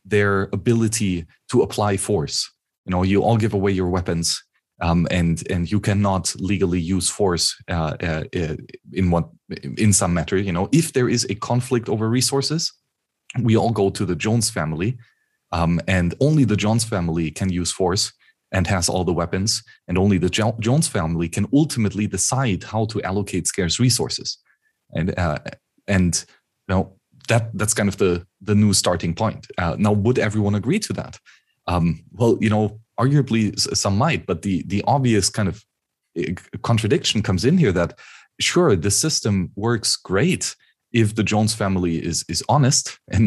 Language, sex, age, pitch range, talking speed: English, male, 30-49, 95-115 Hz, 170 wpm